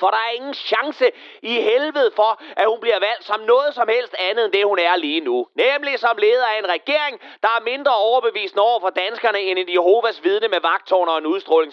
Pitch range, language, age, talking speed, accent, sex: 190-300 Hz, Danish, 30-49, 230 wpm, native, male